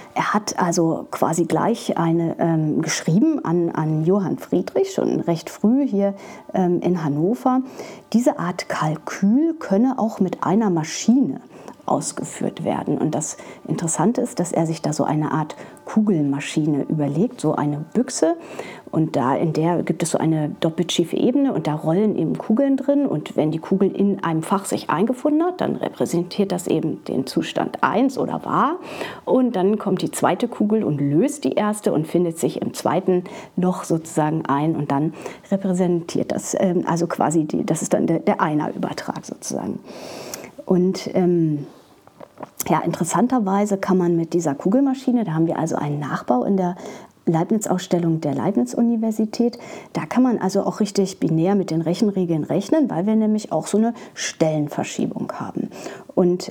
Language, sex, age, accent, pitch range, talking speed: German, female, 30-49, German, 165-220 Hz, 160 wpm